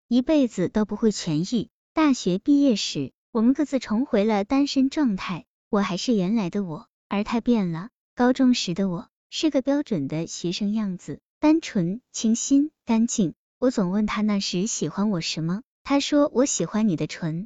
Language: Chinese